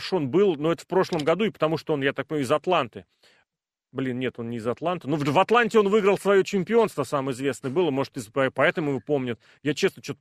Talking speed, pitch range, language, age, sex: 230 wpm, 145-200 Hz, Russian, 30-49, male